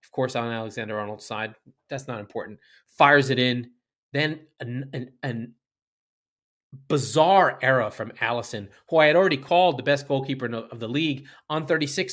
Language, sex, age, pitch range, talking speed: English, male, 30-49, 130-190 Hz, 150 wpm